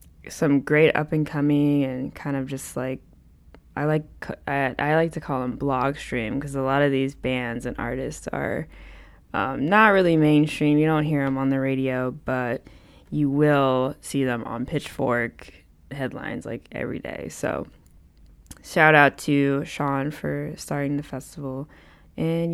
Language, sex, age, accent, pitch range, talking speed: English, female, 10-29, American, 135-155 Hz, 160 wpm